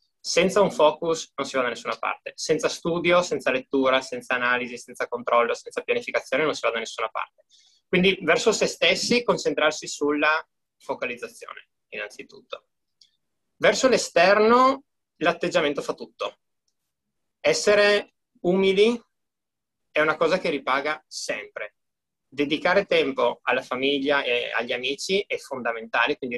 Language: Italian